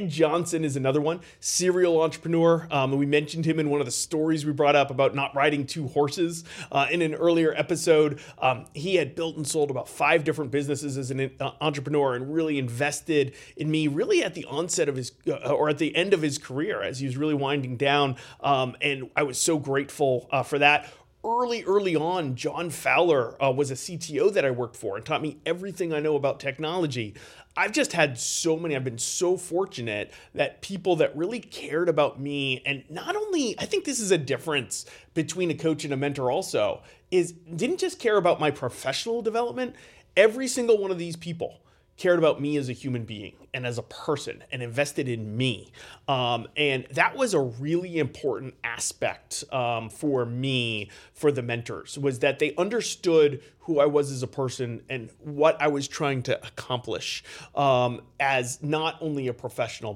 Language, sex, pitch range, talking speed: English, male, 130-165 Hz, 195 wpm